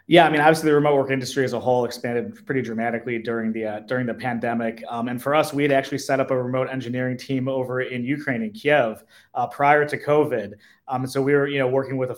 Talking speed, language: 255 wpm, English